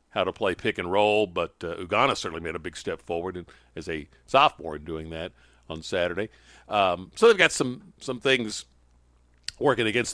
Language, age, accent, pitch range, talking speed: English, 50-69, American, 105-160 Hz, 190 wpm